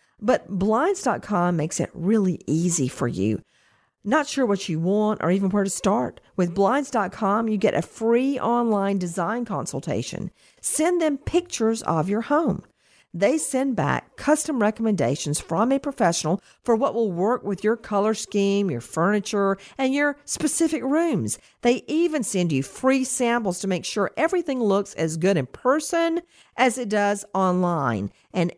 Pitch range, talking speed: 175-255 Hz, 160 wpm